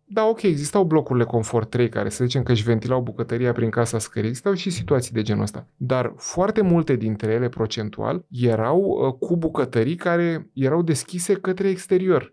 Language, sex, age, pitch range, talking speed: Romanian, male, 30-49, 120-180 Hz, 180 wpm